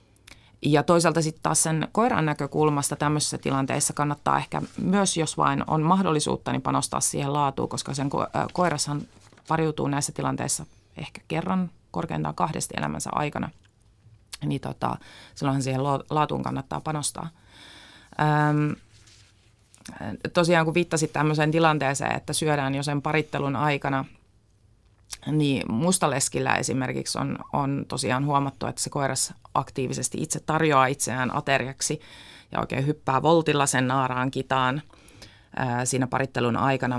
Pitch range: 120-155 Hz